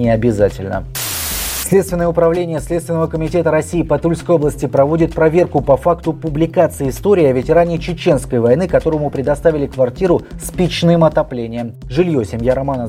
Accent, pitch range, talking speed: native, 130-165 Hz, 135 wpm